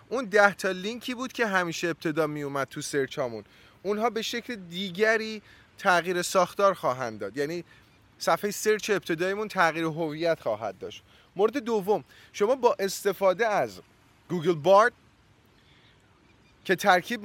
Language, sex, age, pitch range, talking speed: Persian, male, 30-49, 155-210 Hz, 130 wpm